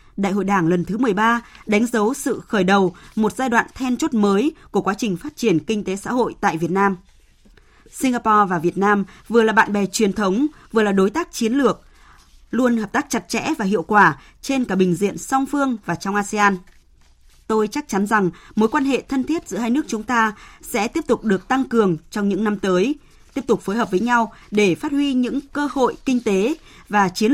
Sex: female